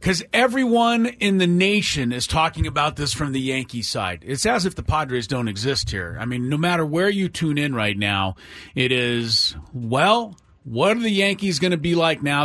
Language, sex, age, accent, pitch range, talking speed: English, male, 40-59, American, 125-175 Hz, 205 wpm